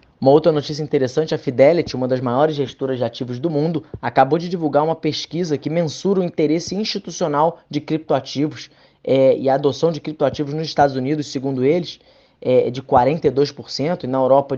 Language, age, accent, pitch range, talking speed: Portuguese, 20-39, Brazilian, 135-165 Hz, 170 wpm